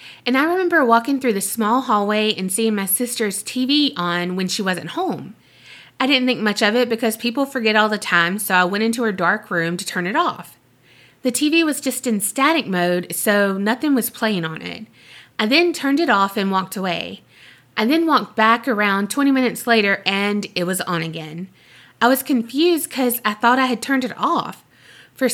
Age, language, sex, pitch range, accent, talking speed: 20-39, English, female, 195-255 Hz, American, 205 wpm